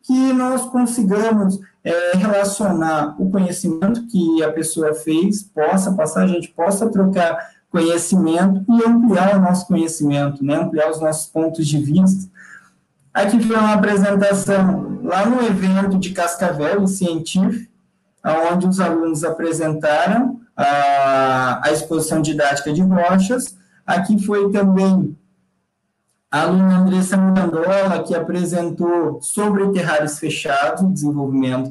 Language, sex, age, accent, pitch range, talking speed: Portuguese, male, 20-39, Brazilian, 165-200 Hz, 120 wpm